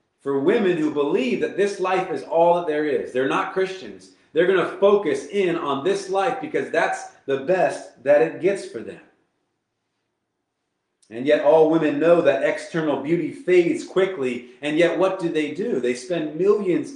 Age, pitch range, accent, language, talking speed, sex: 30-49, 140-195 Hz, American, English, 175 wpm, male